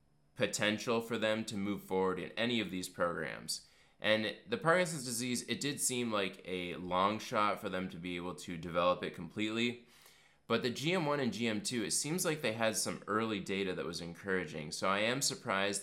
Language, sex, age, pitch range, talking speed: English, male, 20-39, 95-115 Hz, 195 wpm